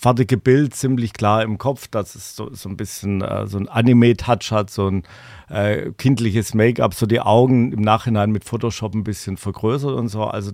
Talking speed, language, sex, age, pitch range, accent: 200 wpm, German, male, 50-69, 110-130 Hz, German